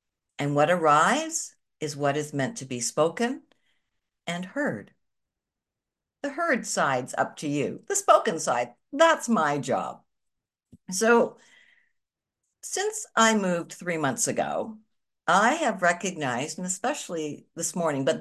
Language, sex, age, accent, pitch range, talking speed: English, female, 60-79, American, 135-210 Hz, 130 wpm